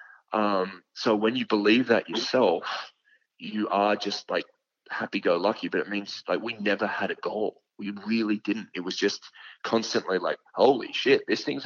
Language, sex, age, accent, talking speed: English, male, 30-49, Australian, 180 wpm